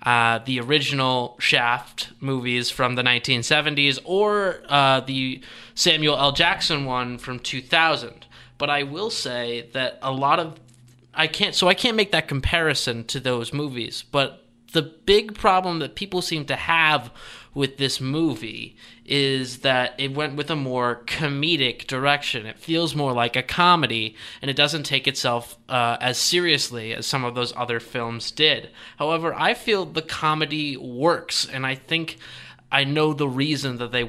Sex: male